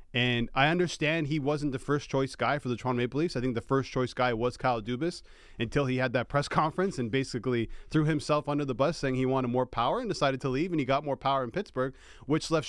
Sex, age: male, 30-49